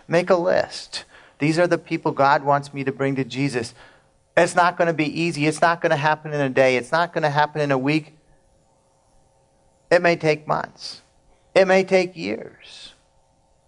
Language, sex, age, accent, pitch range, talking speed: English, male, 50-69, American, 130-155 Hz, 195 wpm